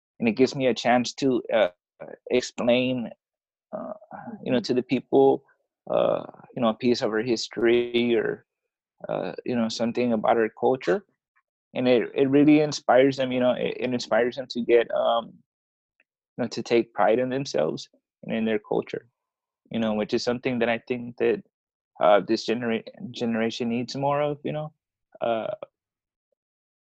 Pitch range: 115-130 Hz